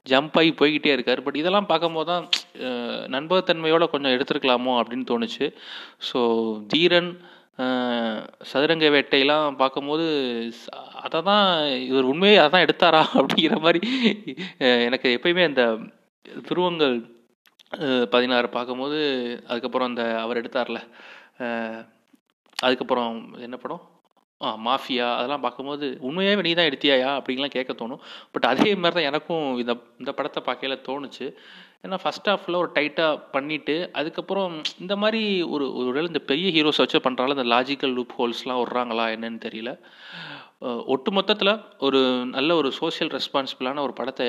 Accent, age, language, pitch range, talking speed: native, 30-49, Tamil, 120-160 Hz, 125 wpm